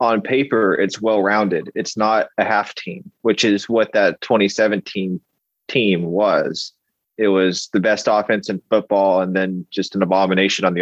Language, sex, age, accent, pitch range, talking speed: English, male, 20-39, American, 95-110 Hz, 165 wpm